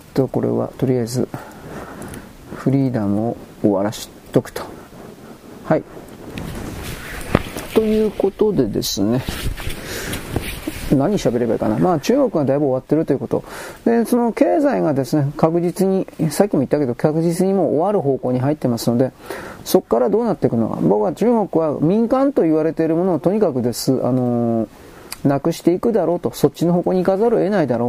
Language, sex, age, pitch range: Japanese, male, 40-59, 120-170 Hz